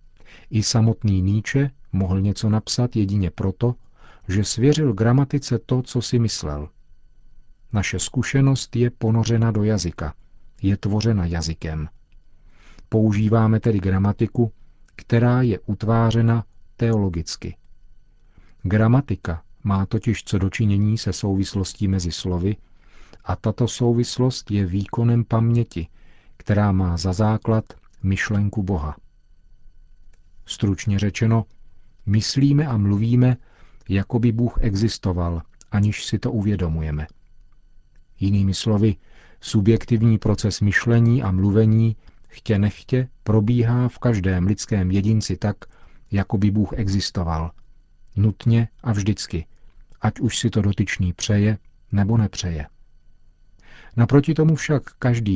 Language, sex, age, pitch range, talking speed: Czech, male, 40-59, 95-115 Hz, 105 wpm